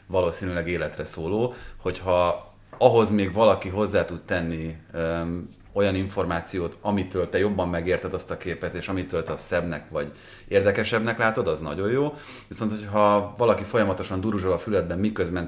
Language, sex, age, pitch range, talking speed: Hungarian, male, 30-49, 90-120 Hz, 150 wpm